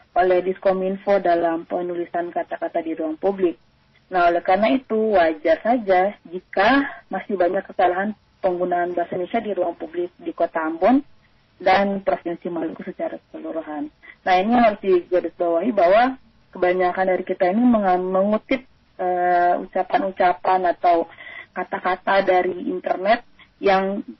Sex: female